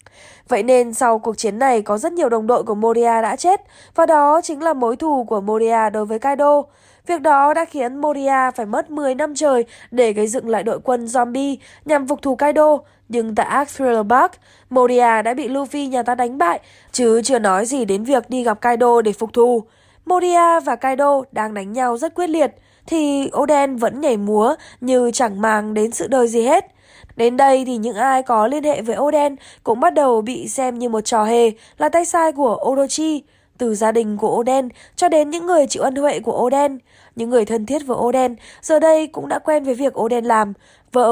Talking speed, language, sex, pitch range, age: 215 wpm, Vietnamese, female, 230-290 Hz, 20-39